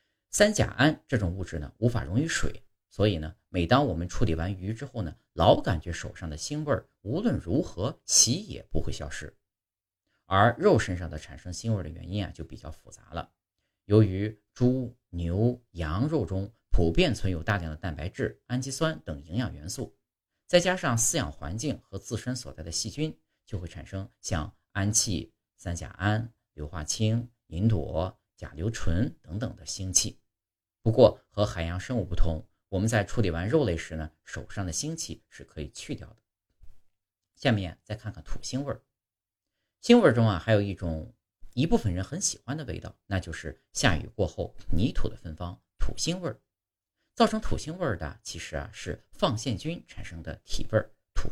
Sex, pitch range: male, 85-115 Hz